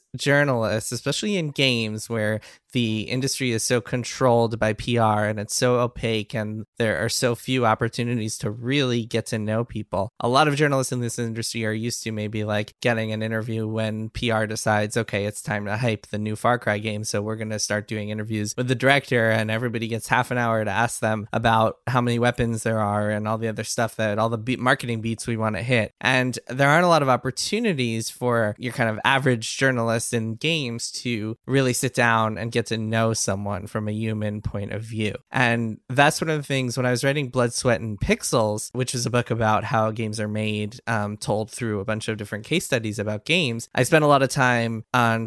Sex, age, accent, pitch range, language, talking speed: male, 20-39, American, 110-125 Hz, English, 220 wpm